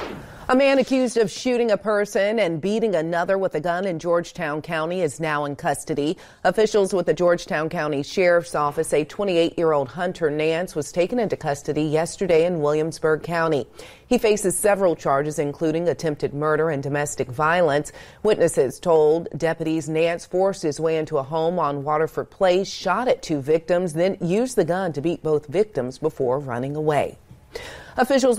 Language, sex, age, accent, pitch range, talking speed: English, female, 40-59, American, 150-185 Hz, 165 wpm